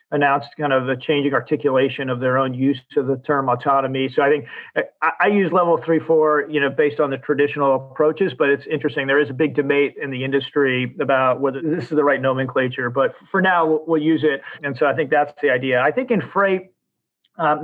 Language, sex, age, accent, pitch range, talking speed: English, male, 40-59, American, 135-155 Hz, 230 wpm